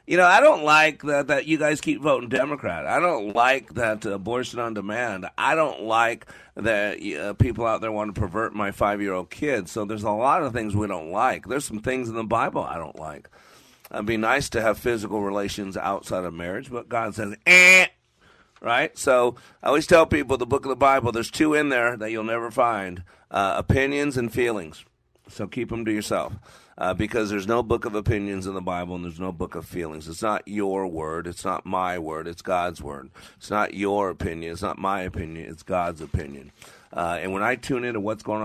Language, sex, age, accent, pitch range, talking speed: English, male, 50-69, American, 95-115 Hz, 215 wpm